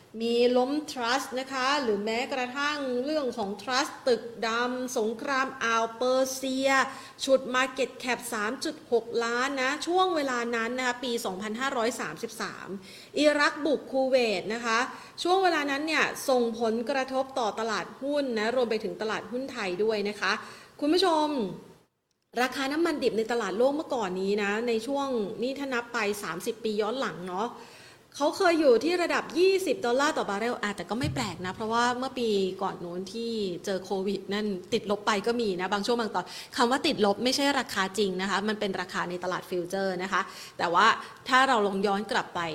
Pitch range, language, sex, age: 210-275 Hz, Thai, female, 30-49